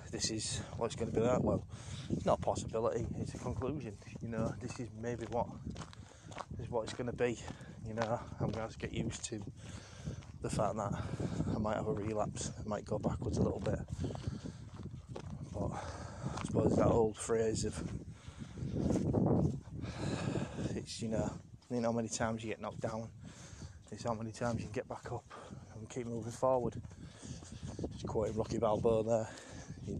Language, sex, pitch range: English, male, 110-120 Hz